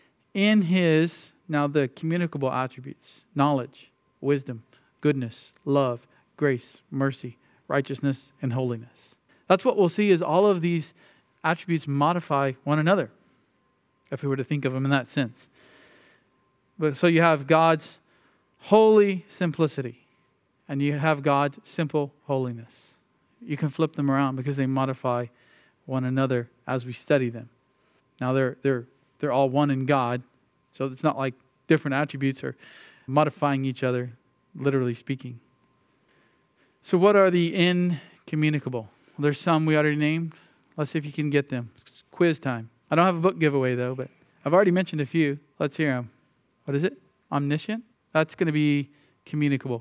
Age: 40-59